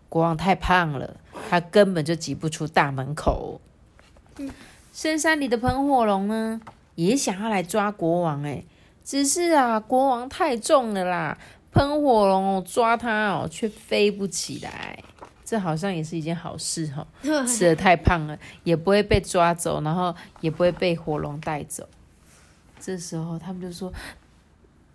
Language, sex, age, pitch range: Chinese, female, 20-39, 165-245 Hz